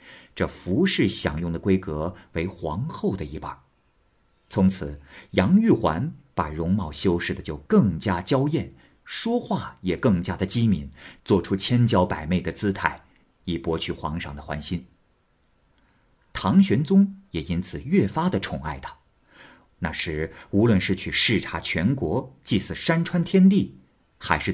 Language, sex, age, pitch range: Chinese, male, 50-69, 80-115 Hz